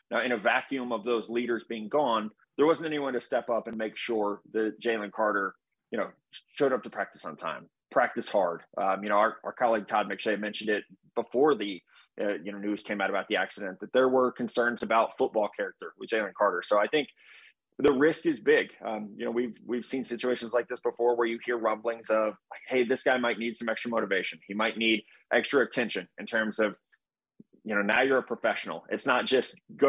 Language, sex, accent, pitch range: English, male, American, 110-125 Hz